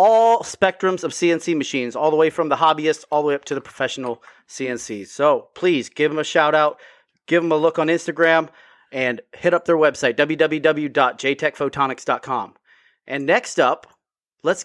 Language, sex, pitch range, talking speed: English, male, 135-190 Hz, 170 wpm